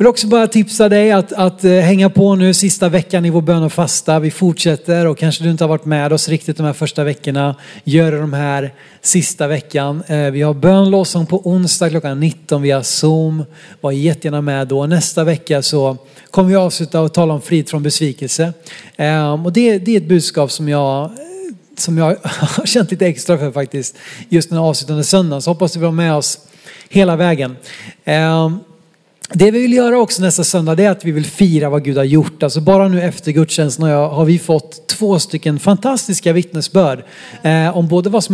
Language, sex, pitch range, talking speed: Swedish, male, 150-190 Hz, 205 wpm